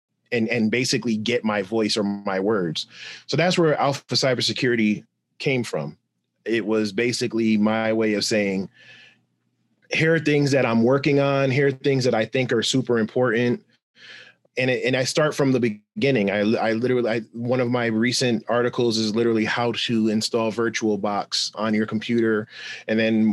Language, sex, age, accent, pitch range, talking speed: English, male, 30-49, American, 110-130 Hz, 170 wpm